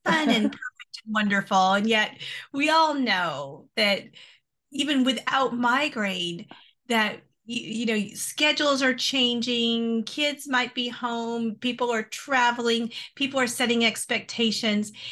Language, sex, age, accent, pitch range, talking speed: English, female, 40-59, American, 200-250 Hz, 125 wpm